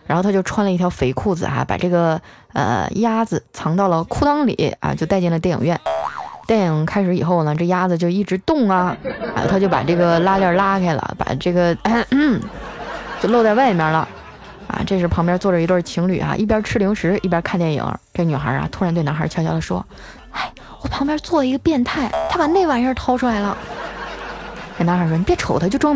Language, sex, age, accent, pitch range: Chinese, female, 20-39, native, 170-245 Hz